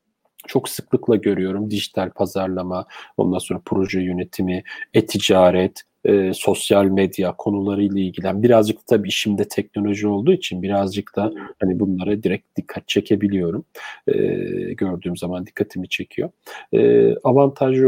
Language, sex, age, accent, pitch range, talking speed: Turkish, male, 40-59, native, 95-115 Hz, 115 wpm